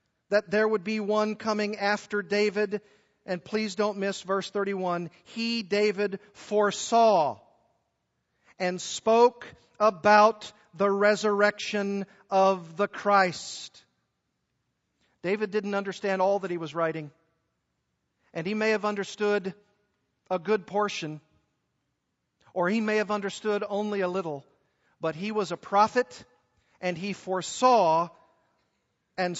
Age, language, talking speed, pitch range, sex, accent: 40-59, English, 120 wpm, 180-210 Hz, male, American